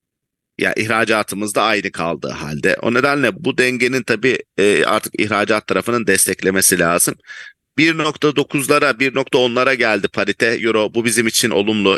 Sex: male